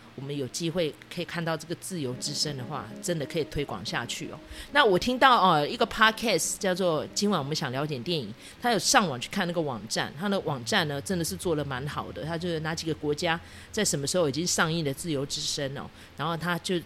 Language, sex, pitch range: Chinese, female, 145-185 Hz